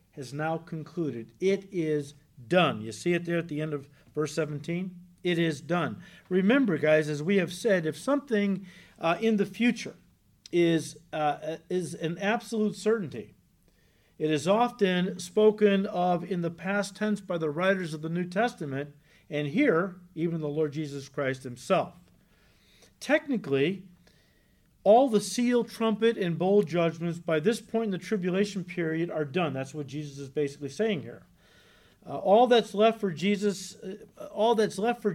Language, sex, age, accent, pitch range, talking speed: English, male, 50-69, American, 155-205 Hz, 165 wpm